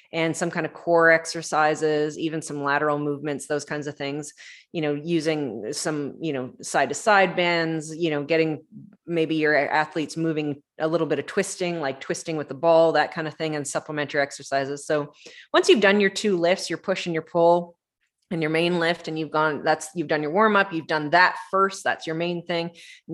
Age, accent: 20-39, American